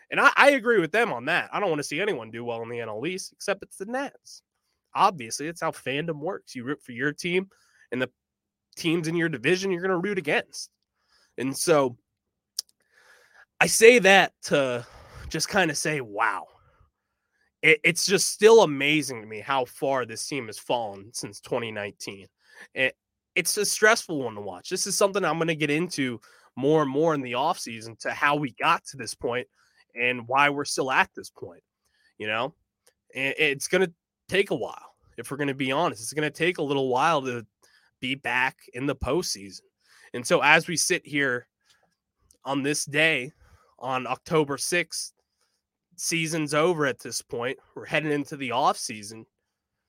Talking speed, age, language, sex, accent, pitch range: 185 wpm, 20-39, English, male, American, 125-170 Hz